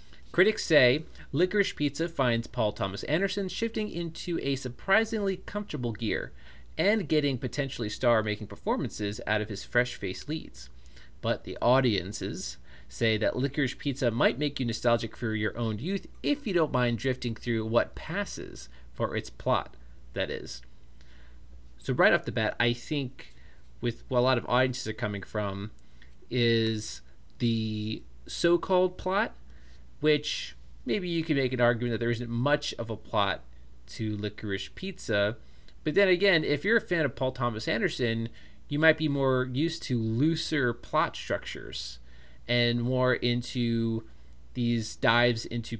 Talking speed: 150 wpm